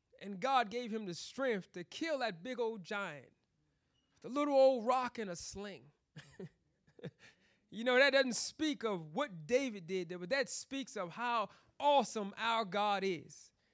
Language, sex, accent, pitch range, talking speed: English, male, American, 210-325 Hz, 160 wpm